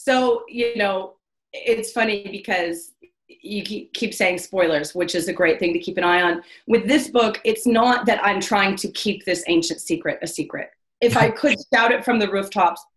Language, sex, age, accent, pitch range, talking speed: English, female, 30-49, American, 180-255 Hz, 200 wpm